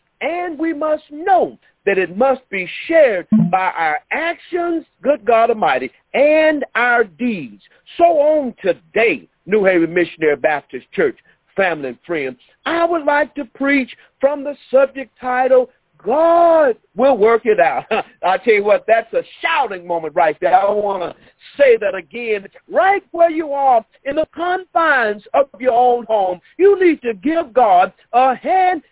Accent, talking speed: American, 160 wpm